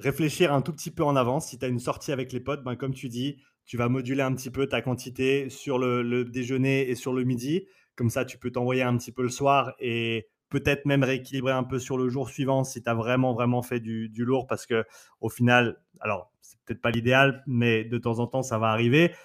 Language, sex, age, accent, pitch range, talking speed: French, male, 30-49, French, 120-140 Hz, 250 wpm